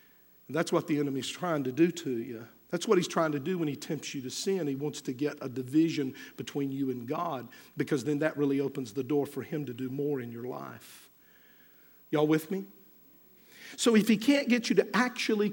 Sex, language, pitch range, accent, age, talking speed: male, English, 140-205 Hz, American, 50-69, 220 wpm